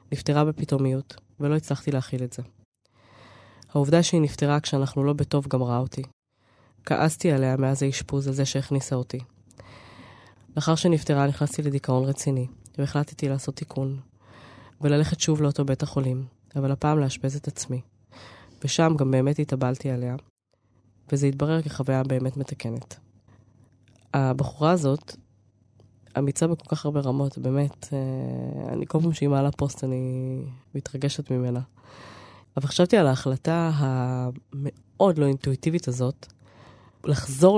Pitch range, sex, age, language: 125-145 Hz, female, 20-39, Hebrew